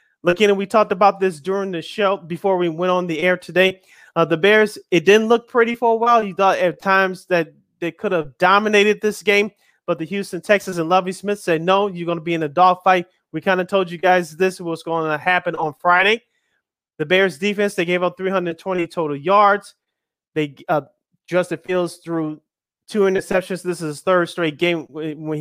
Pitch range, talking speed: 165-200 Hz, 215 wpm